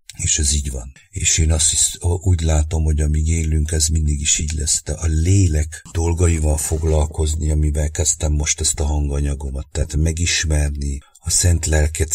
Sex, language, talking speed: male, English, 170 wpm